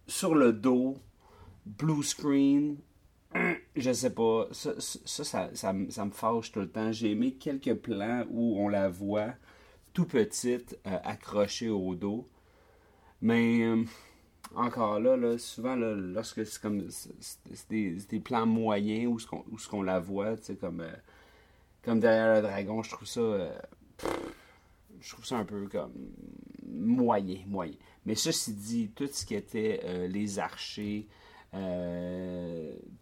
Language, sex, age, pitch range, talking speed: French, male, 40-59, 95-115 Hz, 160 wpm